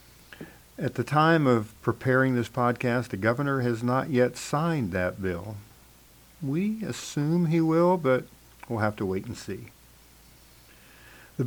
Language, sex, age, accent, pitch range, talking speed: English, male, 50-69, American, 95-130 Hz, 140 wpm